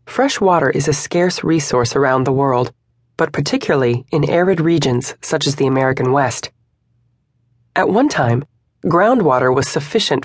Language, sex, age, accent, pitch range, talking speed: English, female, 30-49, American, 125-175 Hz, 145 wpm